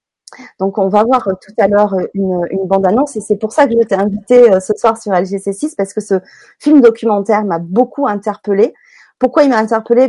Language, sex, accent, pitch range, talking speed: French, female, French, 200-270 Hz, 200 wpm